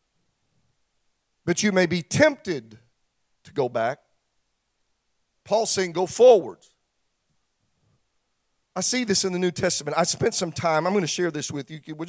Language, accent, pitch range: English, American, 150-180 Hz